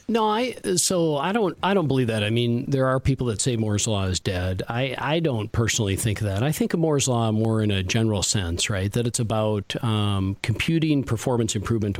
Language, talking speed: English, 220 wpm